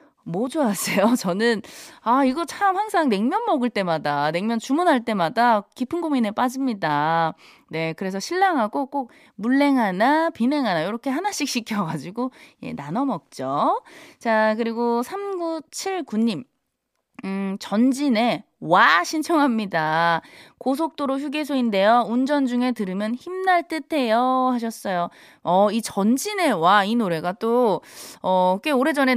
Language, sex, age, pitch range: Korean, female, 20-39, 195-285 Hz